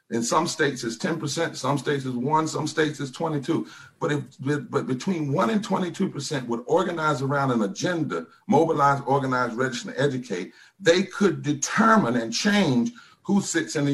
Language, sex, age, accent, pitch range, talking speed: English, male, 50-69, American, 120-155 Hz, 170 wpm